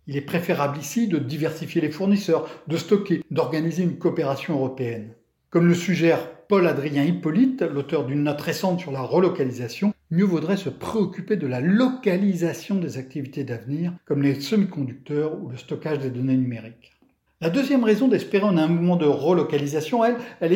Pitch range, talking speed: 155-205 Hz, 165 wpm